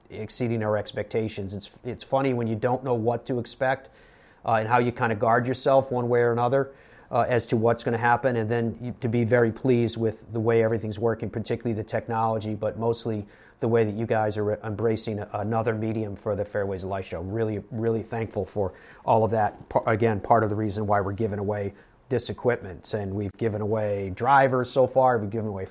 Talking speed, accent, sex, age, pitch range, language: 215 wpm, American, male, 40-59, 115-135 Hz, English